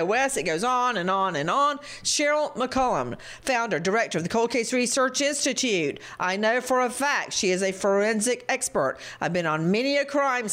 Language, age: English, 50-69